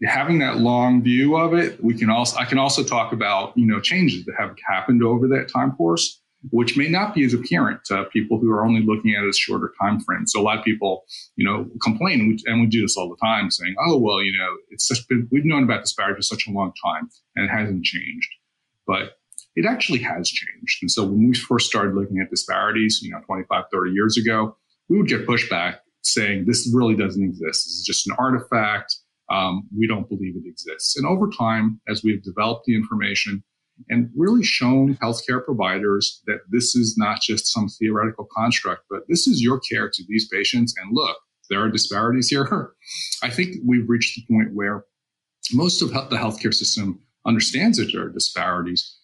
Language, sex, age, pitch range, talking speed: English, male, 40-59, 105-125 Hz, 210 wpm